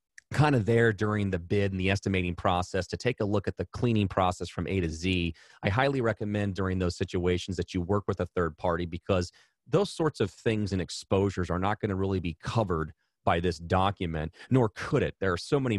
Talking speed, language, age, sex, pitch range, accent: 225 wpm, English, 30-49, male, 90-110 Hz, American